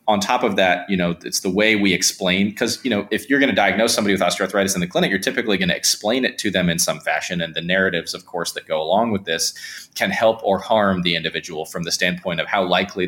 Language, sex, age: English, male, 30-49